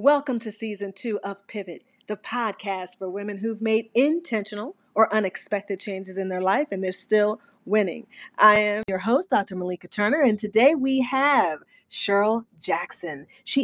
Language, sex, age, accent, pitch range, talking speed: English, female, 40-59, American, 200-260 Hz, 165 wpm